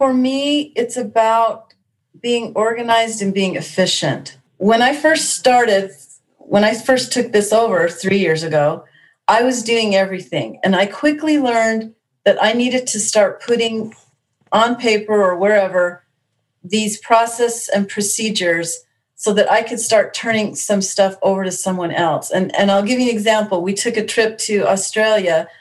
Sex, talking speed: female, 160 wpm